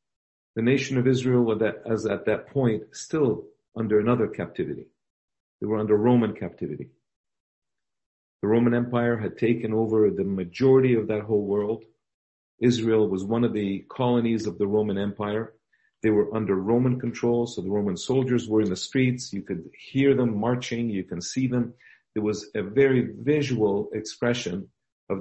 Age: 50-69